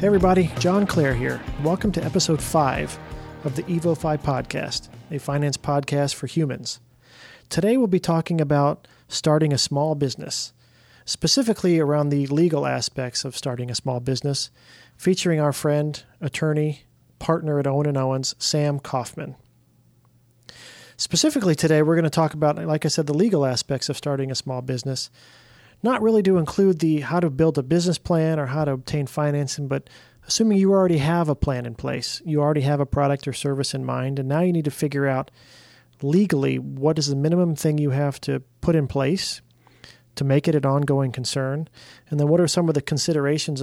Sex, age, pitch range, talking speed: male, 40-59, 130-160 Hz, 180 wpm